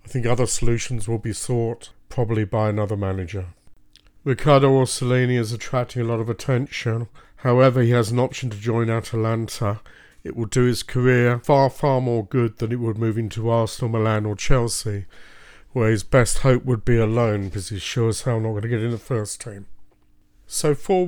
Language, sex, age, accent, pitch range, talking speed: English, male, 50-69, British, 110-125 Hz, 190 wpm